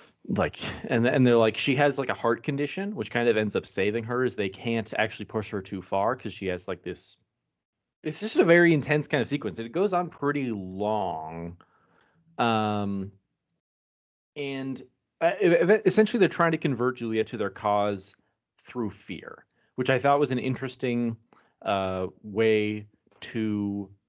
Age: 20-39